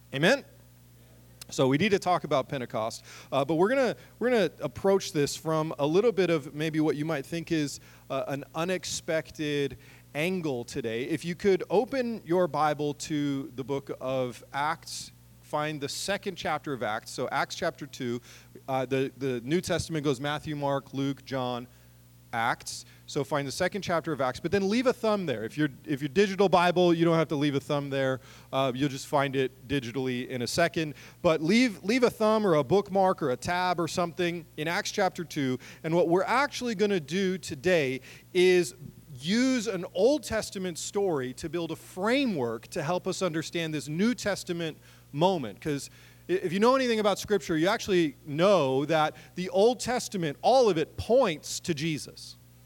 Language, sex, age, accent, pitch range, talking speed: English, male, 30-49, American, 135-185 Hz, 190 wpm